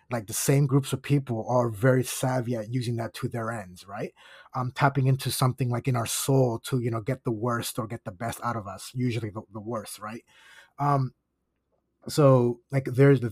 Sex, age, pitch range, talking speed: male, 30-49, 120-135 Hz, 205 wpm